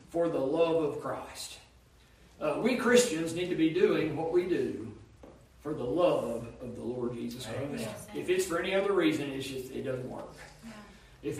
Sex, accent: male, American